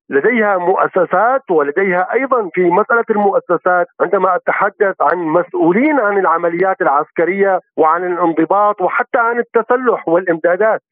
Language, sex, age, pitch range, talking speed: Arabic, male, 50-69, 185-235 Hz, 110 wpm